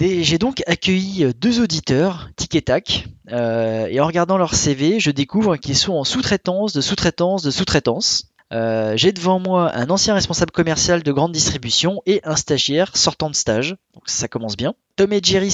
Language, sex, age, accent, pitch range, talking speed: French, male, 20-39, French, 125-175 Hz, 190 wpm